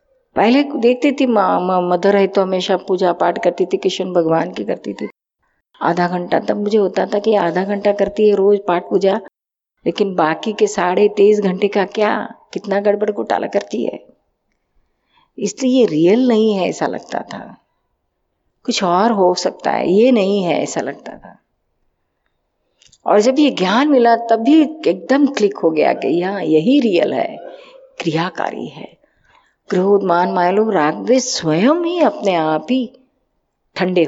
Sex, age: female, 50-69